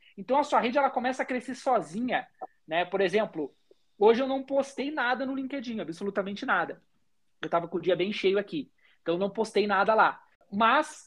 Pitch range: 170-235 Hz